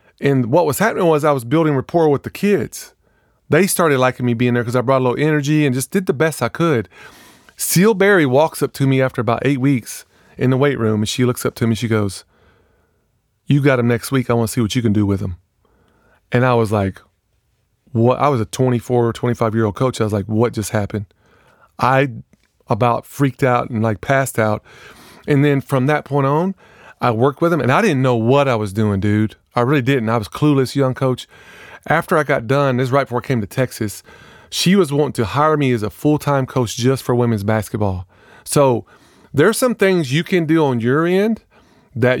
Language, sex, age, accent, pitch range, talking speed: English, male, 30-49, American, 115-145 Hz, 230 wpm